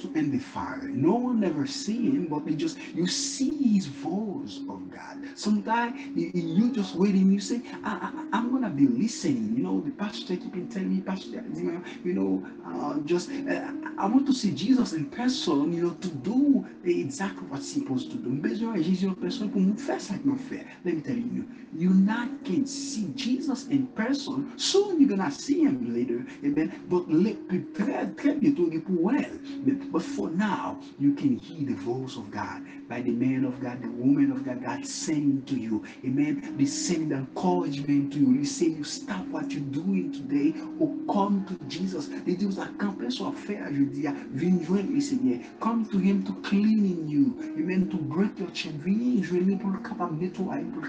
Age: 60-79